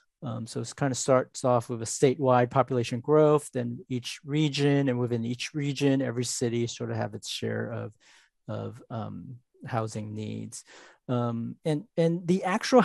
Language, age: English, 40-59